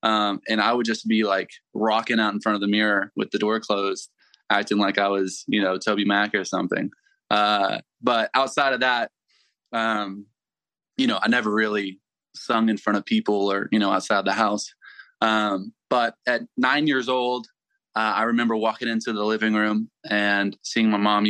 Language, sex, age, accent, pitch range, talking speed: English, male, 20-39, American, 100-125 Hz, 190 wpm